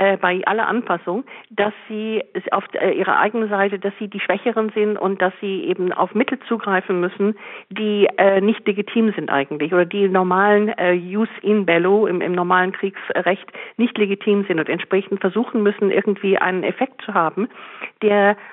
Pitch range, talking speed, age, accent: 180-210 Hz, 160 wpm, 50-69, German